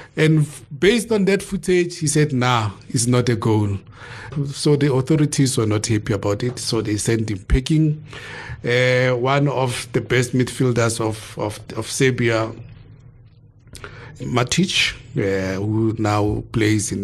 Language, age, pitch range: English, 50-69, 110-140 Hz